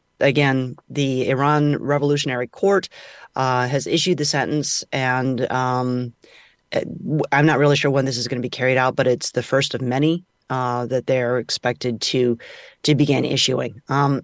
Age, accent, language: 30-49, American, English